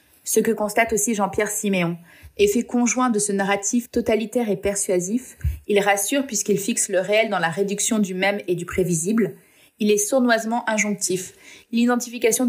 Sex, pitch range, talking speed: female, 185-220 Hz, 160 wpm